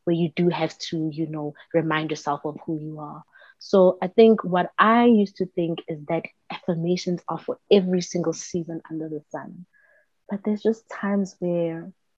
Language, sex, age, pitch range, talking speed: English, female, 20-39, 165-195 Hz, 180 wpm